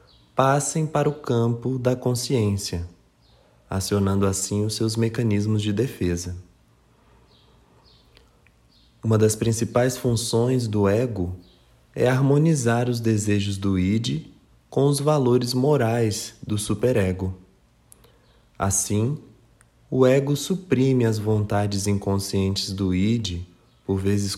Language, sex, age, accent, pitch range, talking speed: English, male, 20-39, Brazilian, 95-125 Hz, 105 wpm